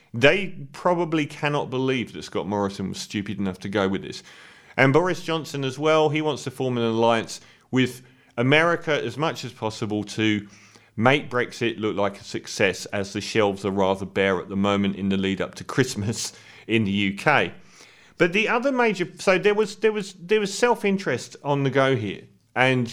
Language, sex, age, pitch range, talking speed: English, male, 40-59, 110-155 Hz, 190 wpm